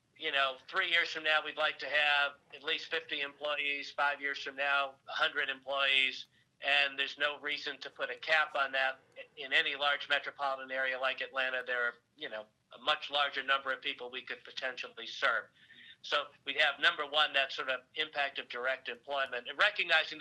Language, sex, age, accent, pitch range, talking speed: English, male, 50-69, American, 130-145 Hz, 195 wpm